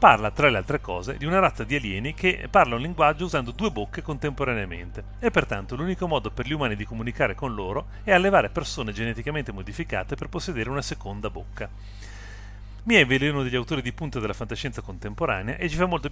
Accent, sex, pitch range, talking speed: native, male, 100-150 Hz, 195 wpm